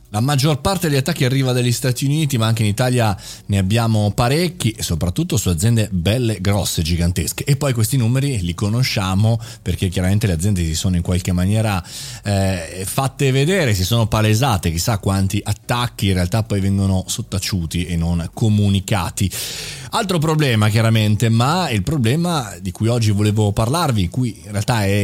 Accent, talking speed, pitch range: native, 170 wpm, 100-135 Hz